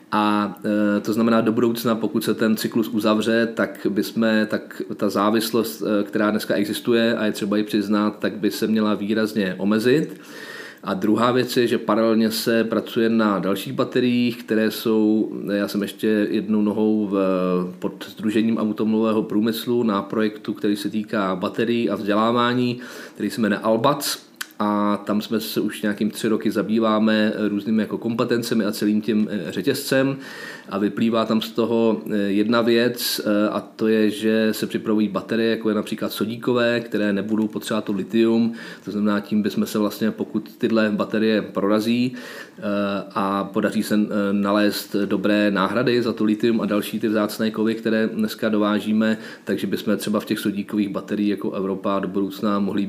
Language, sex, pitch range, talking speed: Czech, male, 105-115 Hz, 160 wpm